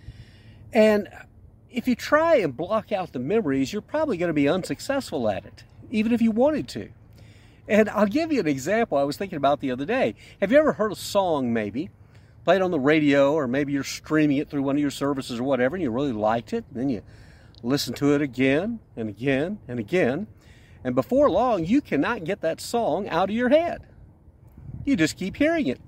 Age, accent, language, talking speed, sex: 50-69, American, English, 205 wpm, male